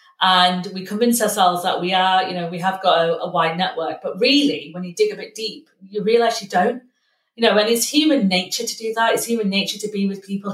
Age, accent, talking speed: 30-49, British, 250 wpm